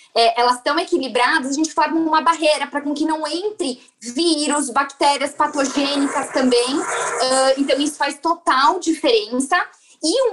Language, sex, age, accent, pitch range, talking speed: Portuguese, female, 20-39, Brazilian, 270-335 Hz, 150 wpm